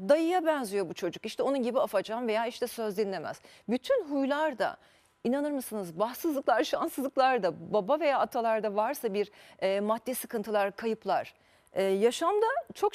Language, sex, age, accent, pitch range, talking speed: Turkish, female, 40-59, native, 225-290 Hz, 145 wpm